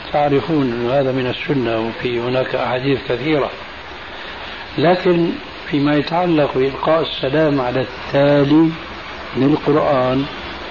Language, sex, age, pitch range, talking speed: Arabic, male, 60-79, 125-145 Hz, 95 wpm